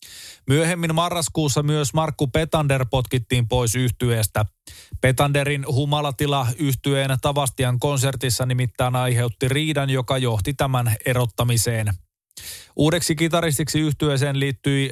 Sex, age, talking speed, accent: male, 20-39, 95 wpm, native